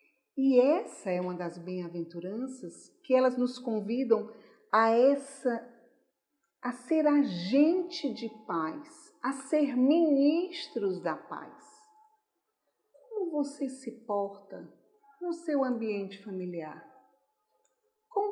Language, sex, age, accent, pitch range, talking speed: Portuguese, female, 50-69, Brazilian, 200-280 Hz, 100 wpm